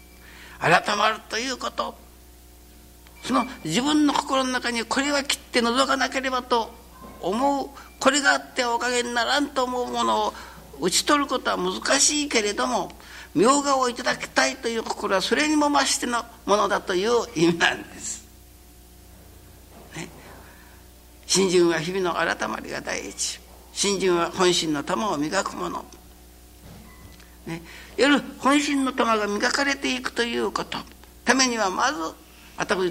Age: 60-79